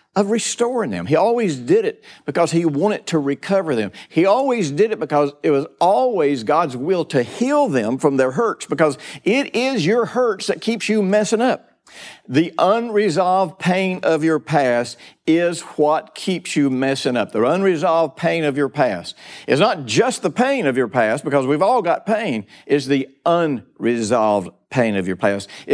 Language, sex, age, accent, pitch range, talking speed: English, male, 50-69, American, 120-180 Hz, 180 wpm